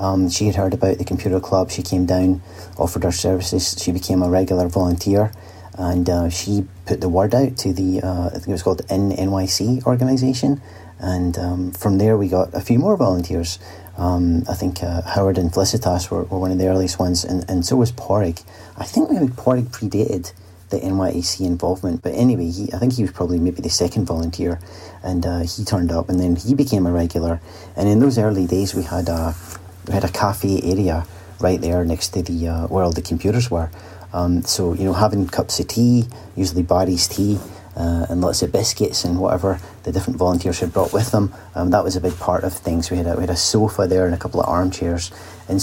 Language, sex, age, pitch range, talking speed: English, male, 30-49, 90-100 Hz, 225 wpm